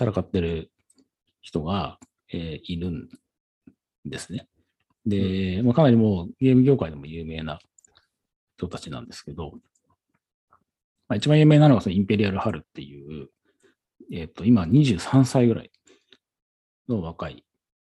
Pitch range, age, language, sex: 85-120 Hz, 40-59, Japanese, male